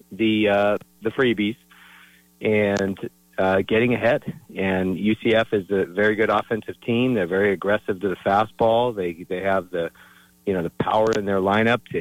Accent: American